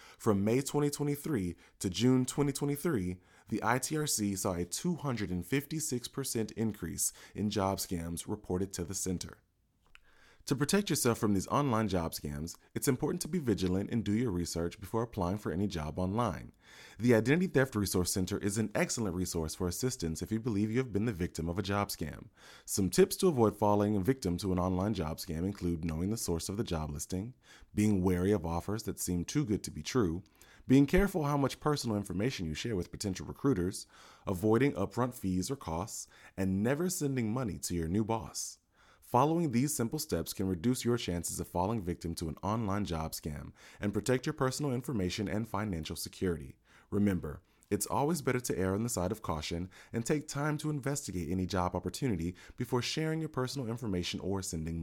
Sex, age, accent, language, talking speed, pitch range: male, 20-39, American, English, 185 wpm, 90-125 Hz